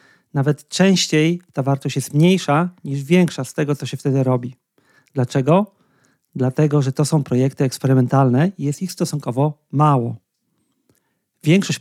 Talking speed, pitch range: 135 wpm, 130-160 Hz